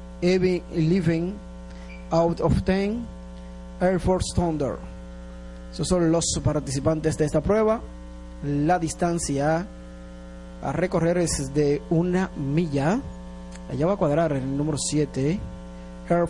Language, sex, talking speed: Spanish, male, 110 wpm